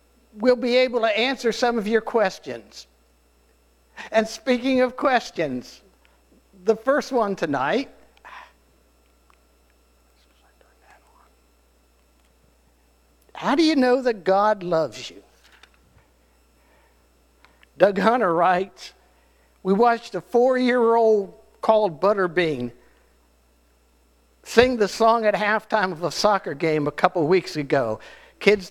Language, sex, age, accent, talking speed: English, male, 60-79, American, 100 wpm